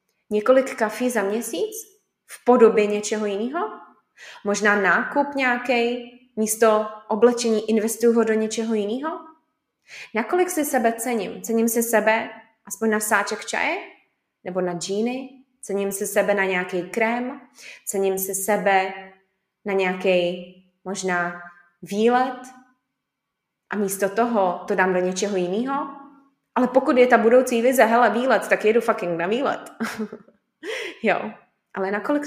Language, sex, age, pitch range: Czech, female, 20-39, 185-235 Hz